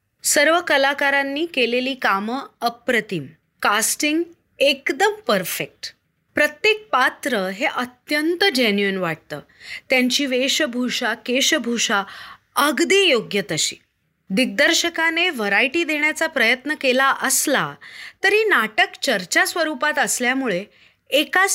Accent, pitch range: native, 225-335 Hz